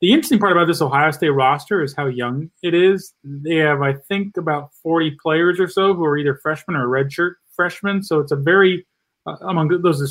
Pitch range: 140-160 Hz